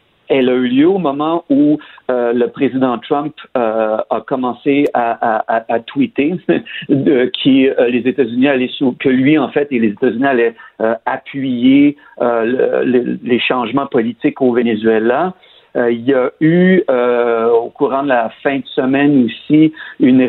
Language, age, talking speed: French, 50-69, 145 wpm